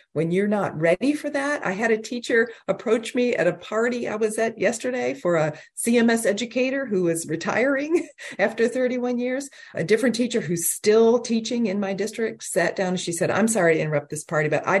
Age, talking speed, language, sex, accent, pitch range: 40-59, 205 wpm, English, female, American, 155-215 Hz